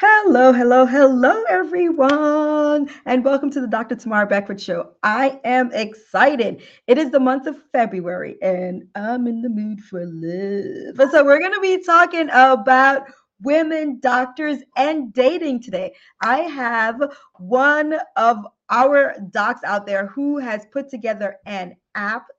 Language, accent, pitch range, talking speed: English, American, 205-285 Hz, 145 wpm